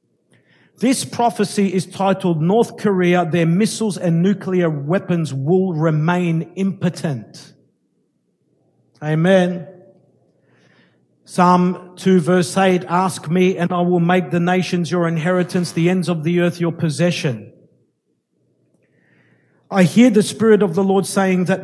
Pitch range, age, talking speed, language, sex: 165-230 Hz, 50-69, 125 wpm, English, male